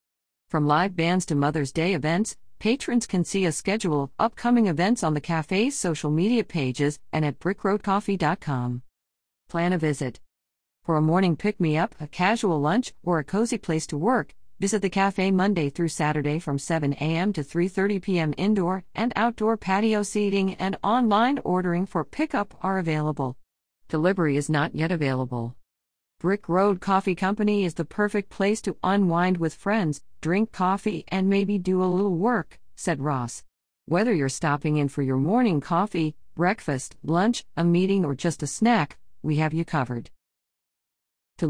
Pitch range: 150-200 Hz